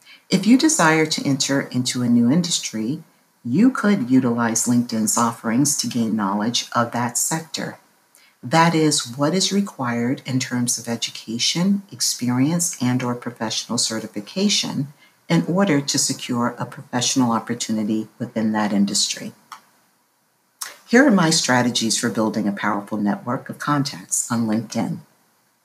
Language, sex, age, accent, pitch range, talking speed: English, female, 50-69, American, 120-170 Hz, 135 wpm